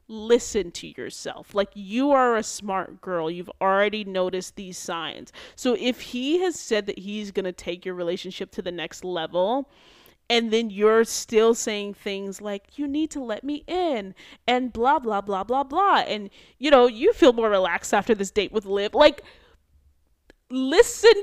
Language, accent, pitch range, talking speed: English, American, 190-250 Hz, 180 wpm